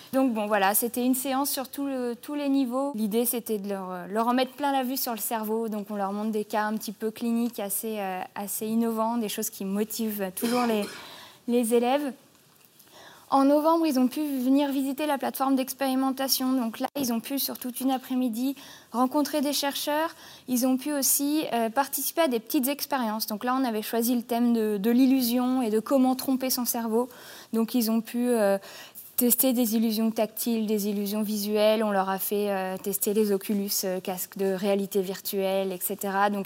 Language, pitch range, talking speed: French, 215-270 Hz, 195 wpm